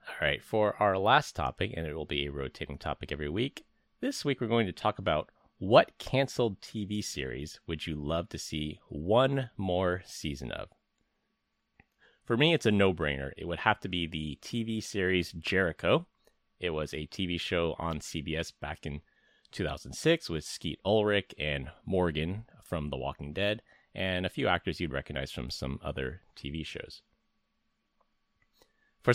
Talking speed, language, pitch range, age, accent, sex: 165 wpm, English, 75-100 Hz, 30-49, American, male